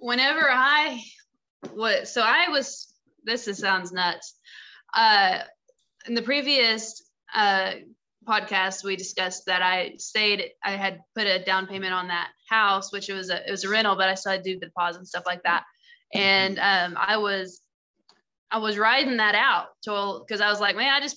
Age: 20-39